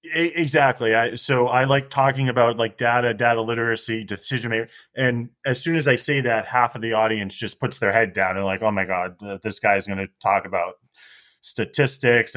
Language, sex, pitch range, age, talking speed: English, male, 110-125 Hz, 30-49, 205 wpm